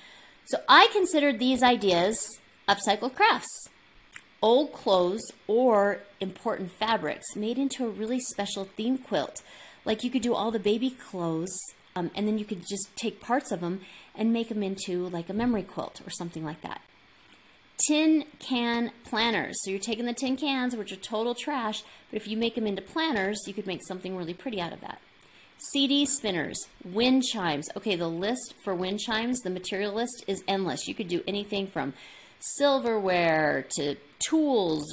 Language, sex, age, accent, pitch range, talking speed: English, female, 30-49, American, 185-245 Hz, 175 wpm